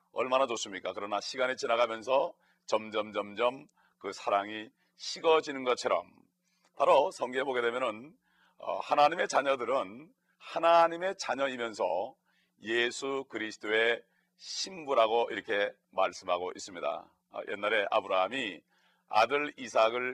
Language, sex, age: Korean, male, 40-59